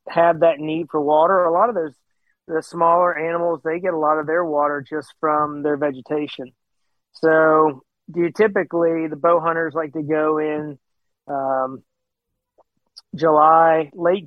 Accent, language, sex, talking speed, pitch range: American, English, male, 155 wpm, 145-160 Hz